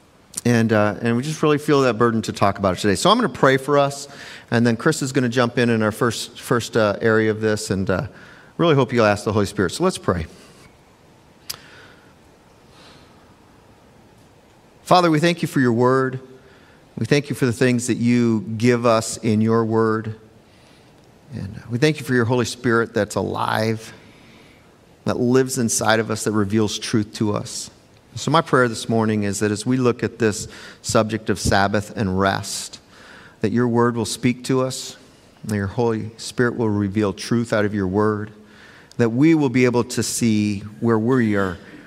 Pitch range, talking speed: 105-120 Hz, 190 wpm